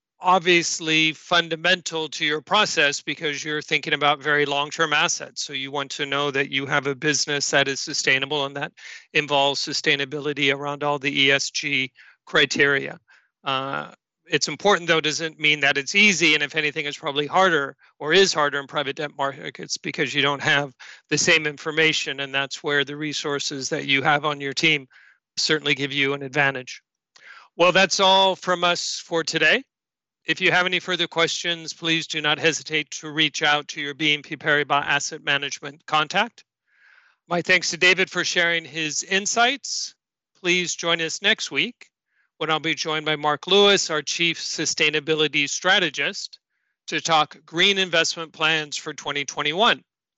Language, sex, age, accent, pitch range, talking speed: English, male, 40-59, American, 145-165 Hz, 165 wpm